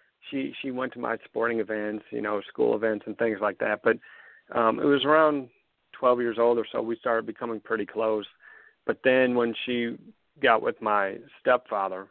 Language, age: English, 40-59